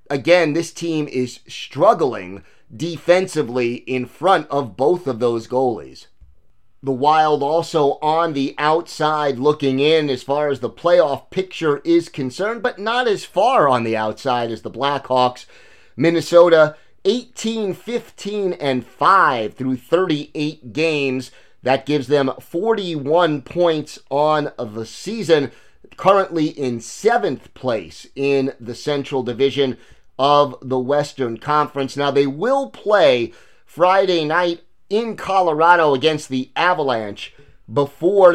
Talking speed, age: 125 wpm, 30-49